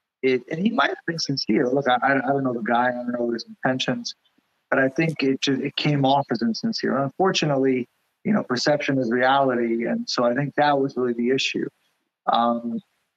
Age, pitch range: 30-49, 125-145 Hz